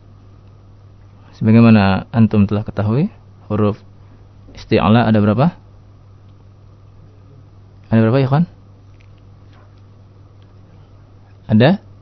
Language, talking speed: Indonesian, 65 wpm